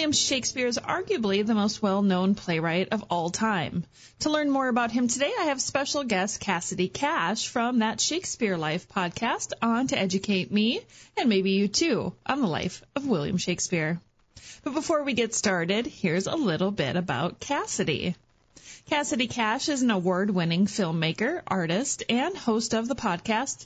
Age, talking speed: 30-49, 165 wpm